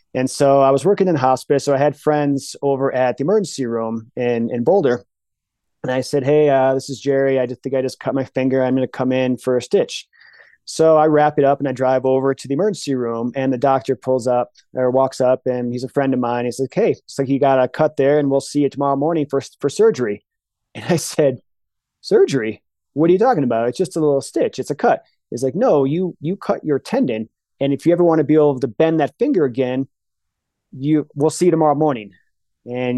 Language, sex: English, male